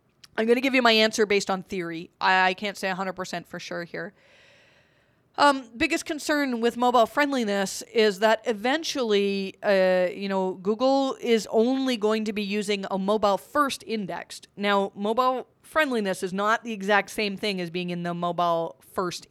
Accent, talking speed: American, 170 wpm